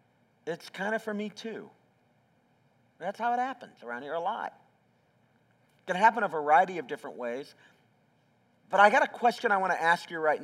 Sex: male